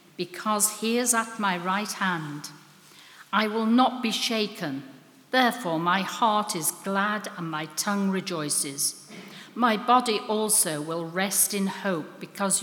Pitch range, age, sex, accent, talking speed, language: 175-225 Hz, 60-79, female, British, 140 wpm, English